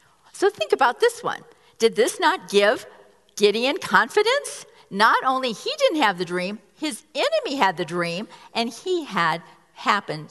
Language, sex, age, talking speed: English, female, 50-69, 155 wpm